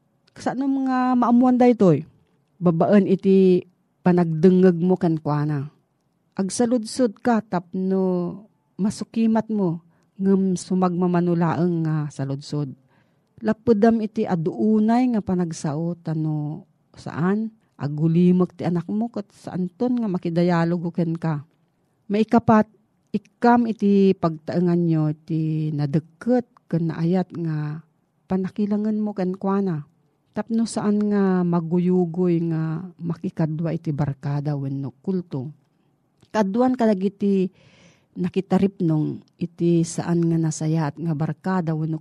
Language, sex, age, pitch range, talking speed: Filipino, female, 40-59, 160-195 Hz, 100 wpm